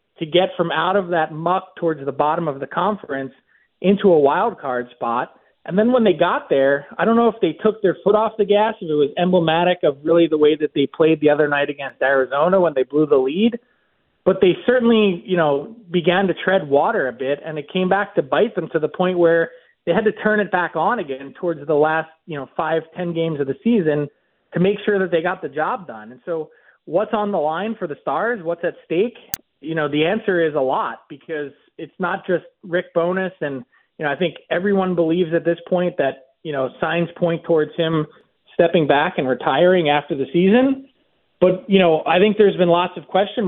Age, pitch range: 30-49, 150-190 Hz